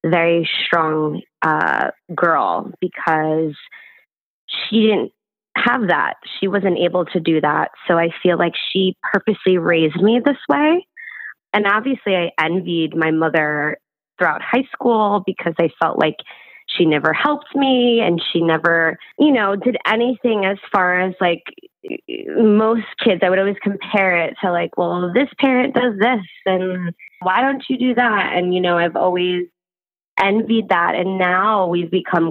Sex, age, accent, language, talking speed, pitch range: female, 20-39, American, English, 155 wpm, 165-205 Hz